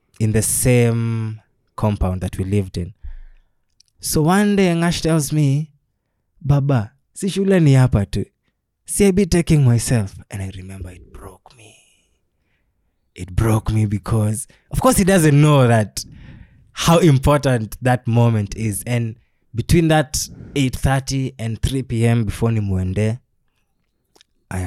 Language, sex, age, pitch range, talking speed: English, male, 20-39, 95-125 Hz, 130 wpm